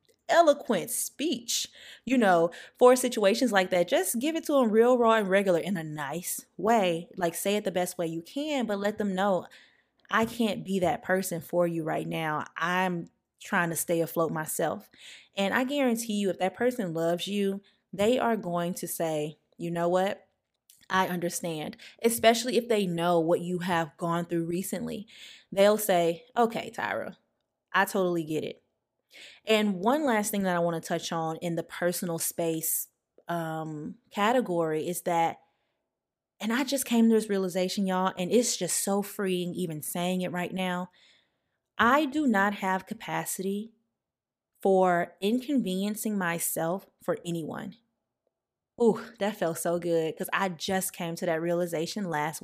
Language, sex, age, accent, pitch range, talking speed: English, female, 20-39, American, 170-220 Hz, 165 wpm